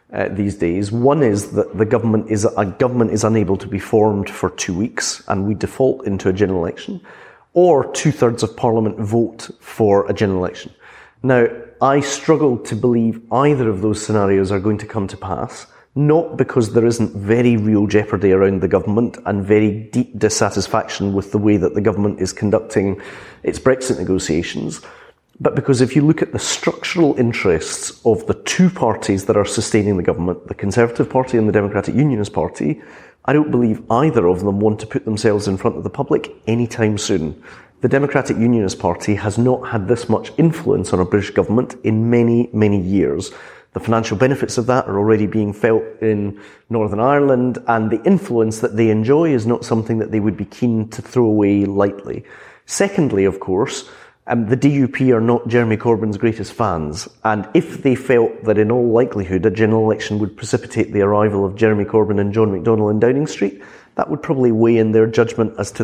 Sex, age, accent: male, 40-59, British